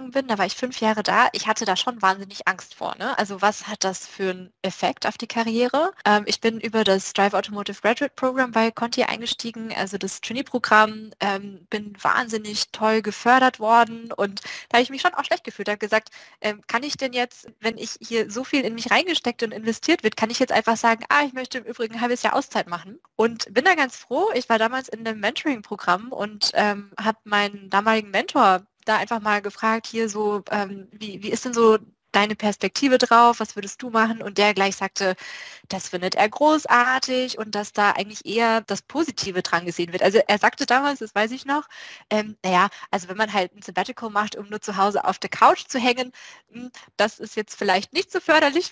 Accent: German